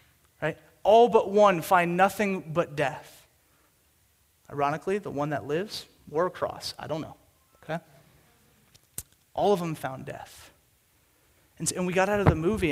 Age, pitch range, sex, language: 30-49, 150-175 Hz, male, English